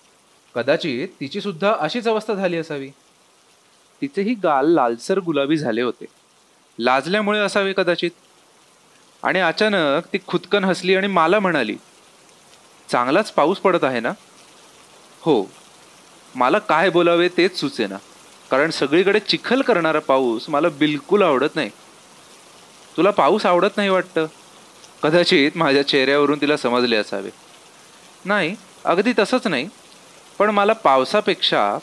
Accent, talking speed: native, 115 wpm